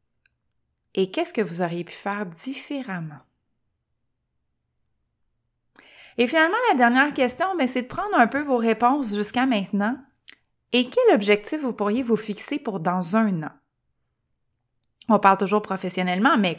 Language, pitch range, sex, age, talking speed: French, 180-245 Hz, female, 30-49, 140 wpm